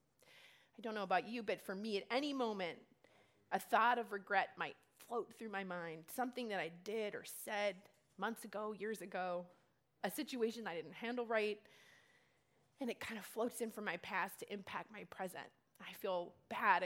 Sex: female